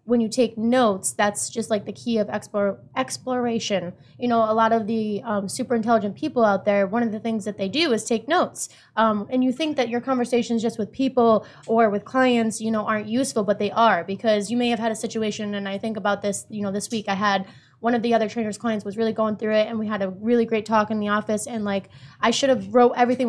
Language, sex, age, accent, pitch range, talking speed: English, female, 20-39, American, 200-230 Hz, 260 wpm